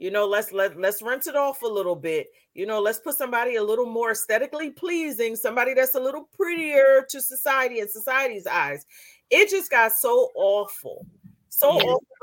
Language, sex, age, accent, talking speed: English, female, 40-59, American, 185 wpm